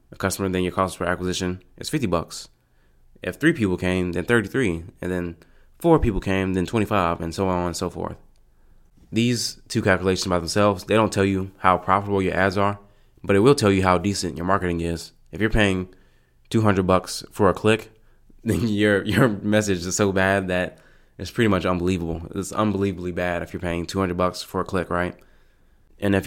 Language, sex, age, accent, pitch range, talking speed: English, male, 20-39, American, 90-100 Hz, 200 wpm